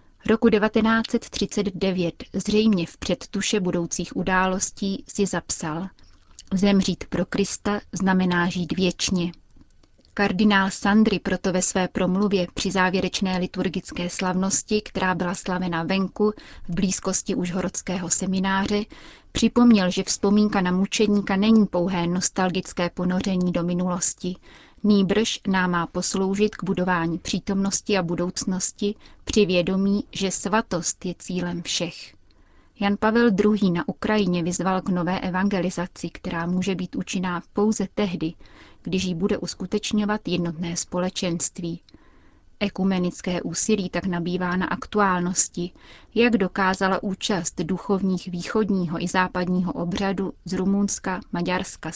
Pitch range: 180-200 Hz